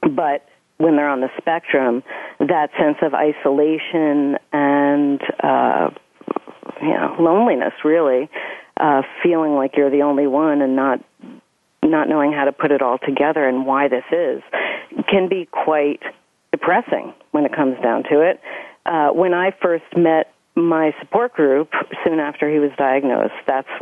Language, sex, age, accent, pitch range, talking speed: English, female, 40-59, American, 145-170 Hz, 155 wpm